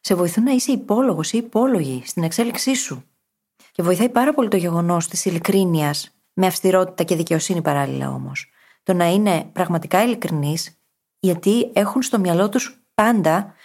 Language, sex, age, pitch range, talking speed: Greek, female, 30-49, 170-235 Hz, 155 wpm